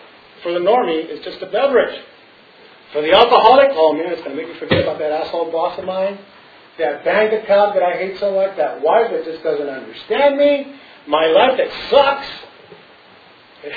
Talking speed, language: 190 wpm, English